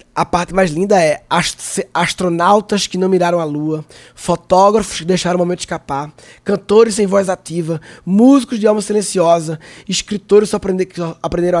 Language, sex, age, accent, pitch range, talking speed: Portuguese, male, 20-39, Brazilian, 175-225 Hz, 150 wpm